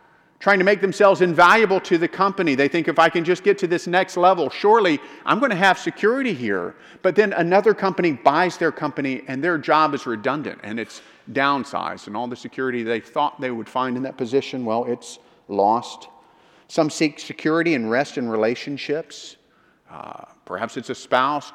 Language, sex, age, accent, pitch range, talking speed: English, male, 50-69, American, 130-180 Hz, 190 wpm